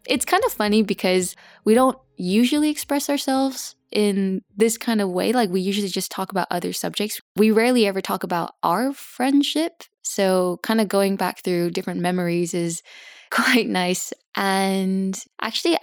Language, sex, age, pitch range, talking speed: English, female, 10-29, 185-225 Hz, 165 wpm